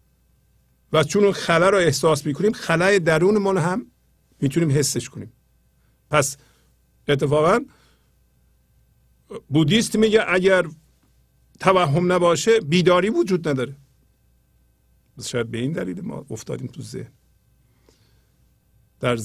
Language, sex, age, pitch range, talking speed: Persian, male, 50-69, 110-170 Hz, 100 wpm